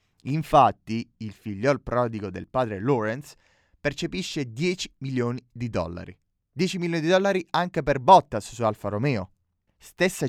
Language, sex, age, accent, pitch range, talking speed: Italian, male, 20-39, native, 110-155 Hz, 135 wpm